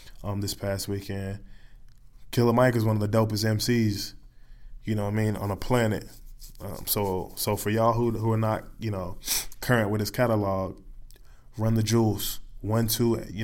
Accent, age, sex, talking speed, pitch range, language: American, 20-39, male, 185 wpm, 105-130 Hz, English